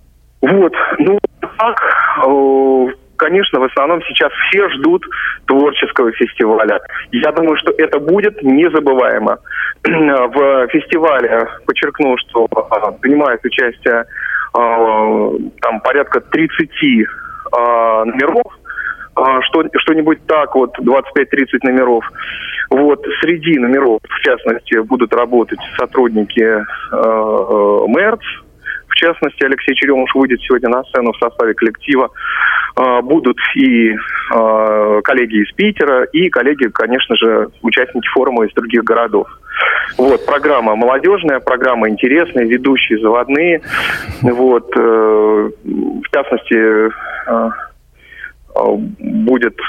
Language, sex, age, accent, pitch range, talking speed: Russian, male, 30-49, native, 115-160 Hz, 100 wpm